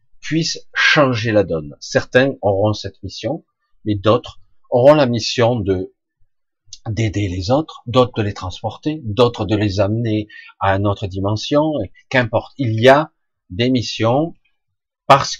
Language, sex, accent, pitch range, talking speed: French, male, French, 100-135 Hz, 140 wpm